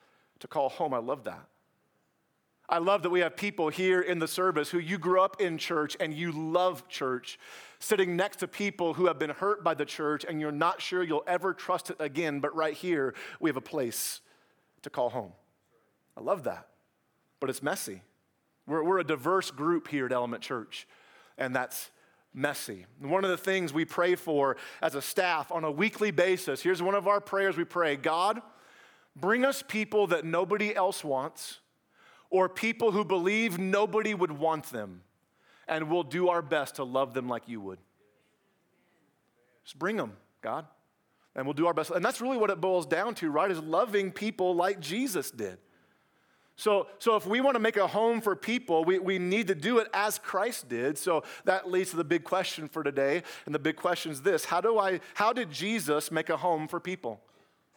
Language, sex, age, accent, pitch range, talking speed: English, male, 40-59, American, 155-200 Hz, 200 wpm